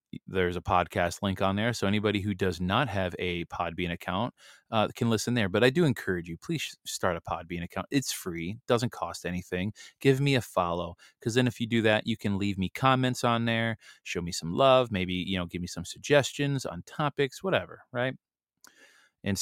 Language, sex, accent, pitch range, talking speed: English, male, American, 90-110 Hz, 205 wpm